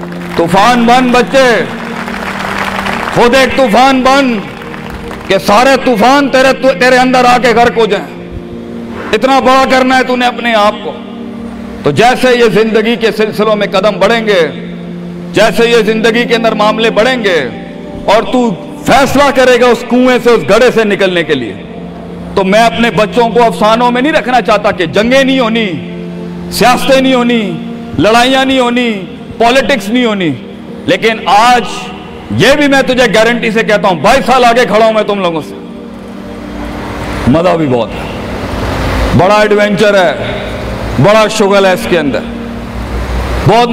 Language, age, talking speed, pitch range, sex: Urdu, 50-69, 150 wpm, 200-250 Hz, male